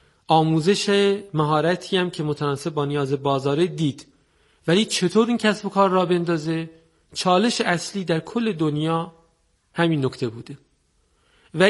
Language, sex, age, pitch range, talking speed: Persian, male, 40-59, 135-170 Hz, 135 wpm